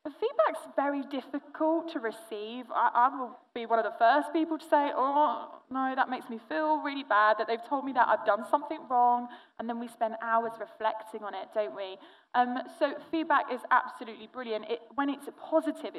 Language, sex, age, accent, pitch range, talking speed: English, female, 20-39, British, 220-290 Hz, 200 wpm